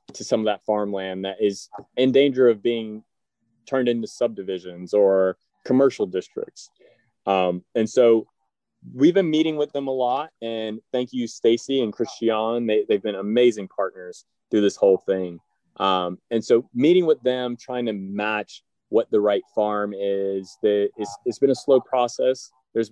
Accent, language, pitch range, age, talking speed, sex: American, English, 105-125 Hz, 30-49, 170 wpm, male